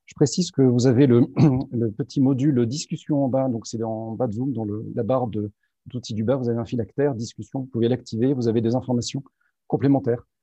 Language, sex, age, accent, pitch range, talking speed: French, male, 40-59, French, 110-135 Hz, 230 wpm